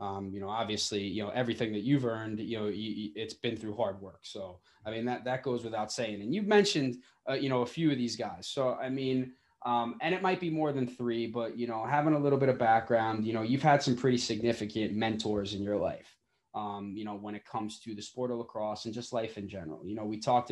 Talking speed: 260 wpm